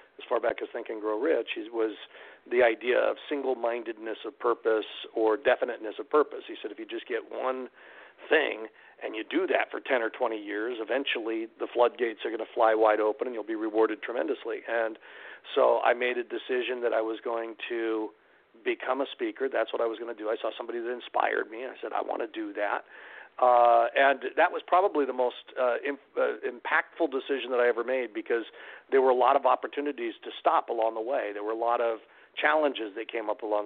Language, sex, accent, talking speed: English, male, American, 220 wpm